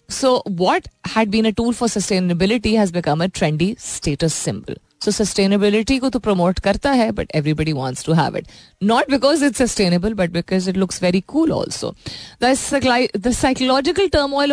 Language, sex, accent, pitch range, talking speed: Hindi, female, native, 160-220 Hz, 140 wpm